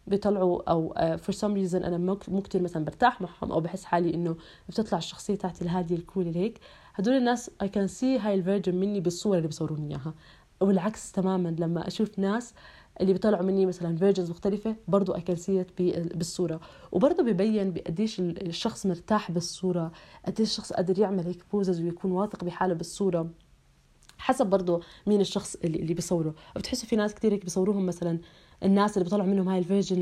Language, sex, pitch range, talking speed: Arabic, female, 170-200 Hz, 170 wpm